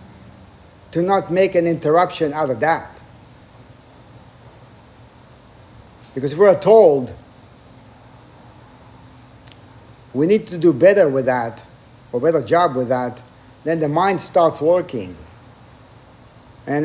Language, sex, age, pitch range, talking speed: English, male, 60-79, 120-165 Hz, 110 wpm